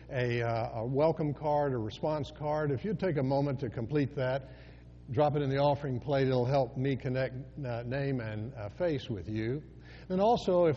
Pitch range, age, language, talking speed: 115-150 Hz, 60-79, English, 205 wpm